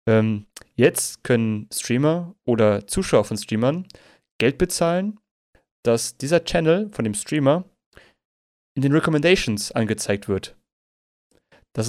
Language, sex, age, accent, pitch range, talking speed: German, male, 30-49, German, 110-135 Hz, 105 wpm